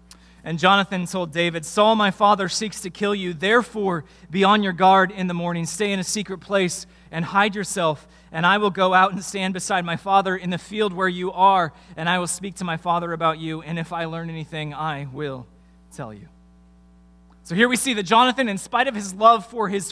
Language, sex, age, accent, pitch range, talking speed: English, male, 30-49, American, 170-215 Hz, 225 wpm